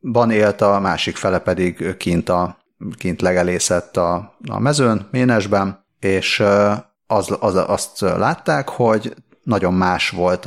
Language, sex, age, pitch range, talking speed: Hungarian, male, 30-49, 90-105 Hz, 130 wpm